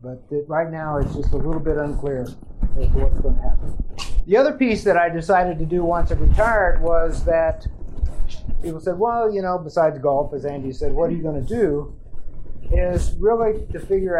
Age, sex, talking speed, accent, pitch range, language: 50-69, male, 195 wpm, American, 145-190 Hz, English